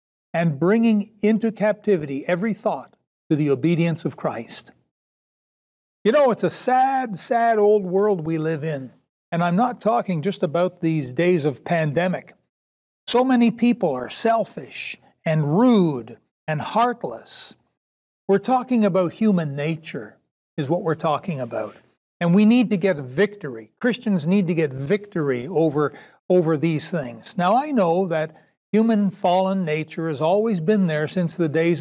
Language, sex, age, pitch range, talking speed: English, male, 60-79, 160-205 Hz, 150 wpm